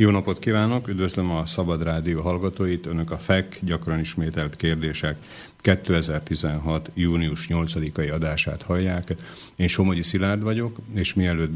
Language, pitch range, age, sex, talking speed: Slovak, 80-90 Hz, 50-69, male, 130 wpm